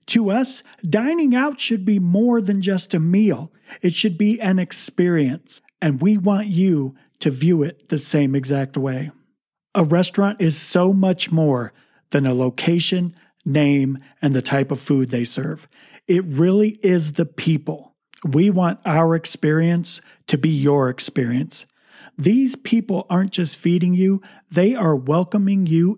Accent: American